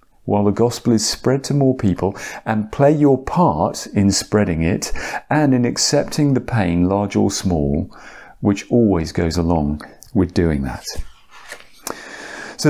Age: 40-59